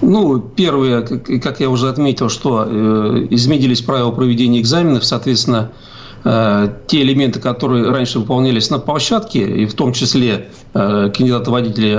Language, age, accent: Russian, 50-69, native